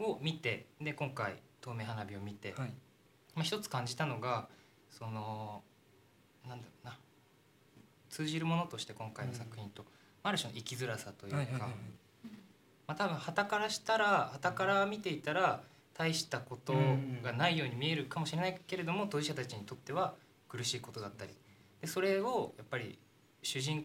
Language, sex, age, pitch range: Japanese, male, 20-39, 110-155 Hz